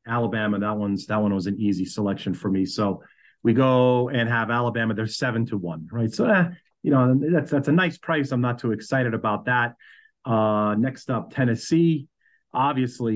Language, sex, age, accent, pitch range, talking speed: English, male, 40-59, American, 105-125 Hz, 190 wpm